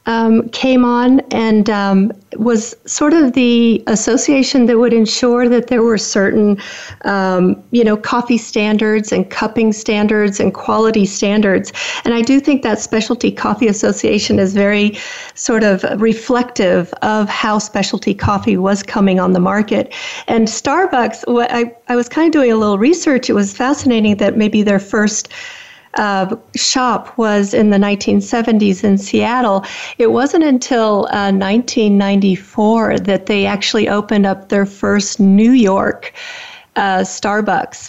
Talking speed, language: 145 wpm, English